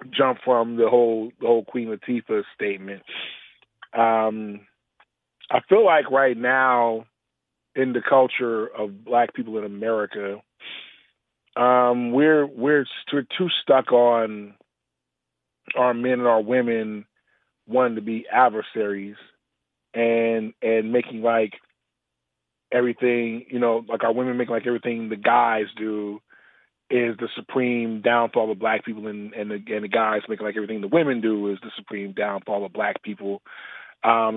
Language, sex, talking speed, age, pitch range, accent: English, male, 145 wpm, 30-49, 110-125 Hz, American